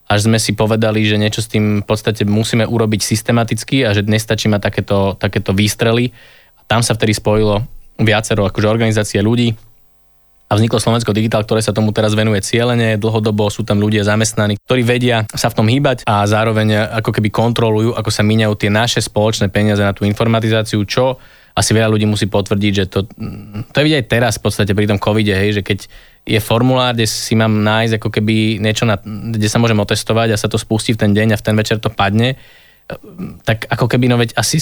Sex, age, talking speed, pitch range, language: male, 20-39, 205 wpm, 105-120 Hz, Slovak